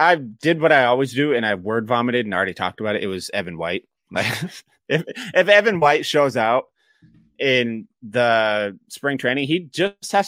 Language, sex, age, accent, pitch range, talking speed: English, male, 30-49, American, 105-140 Hz, 185 wpm